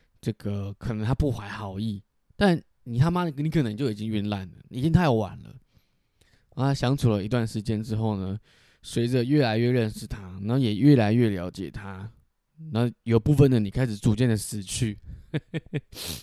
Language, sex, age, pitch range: Chinese, male, 20-39, 105-130 Hz